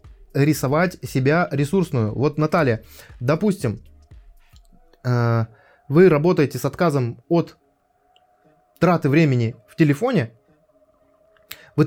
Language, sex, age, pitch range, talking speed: Russian, male, 20-39, 130-185 Hz, 85 wpm